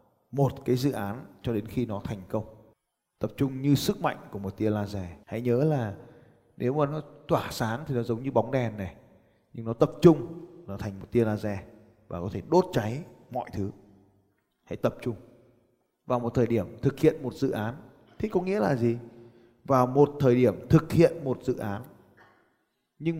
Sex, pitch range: male, 115-165 Hz